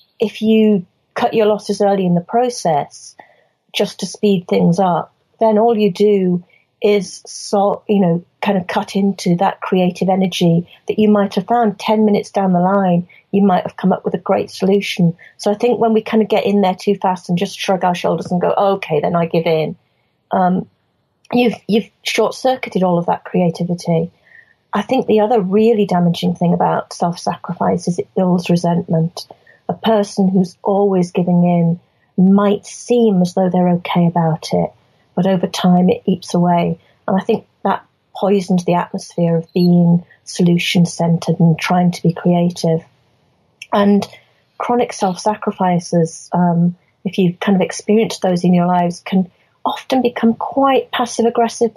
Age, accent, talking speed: 40-59, British, 170 wpm